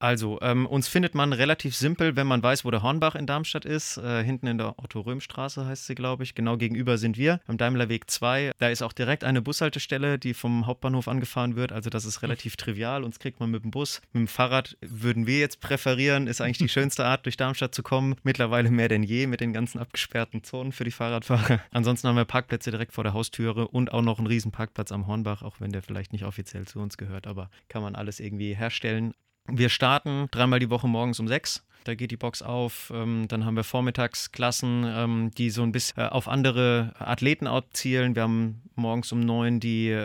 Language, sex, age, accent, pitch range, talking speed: German, male, 30-49, German, 110-130 Hz, 215 wpm